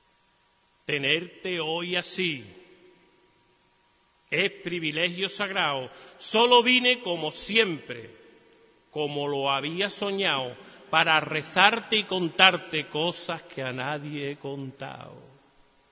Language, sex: Spanish, male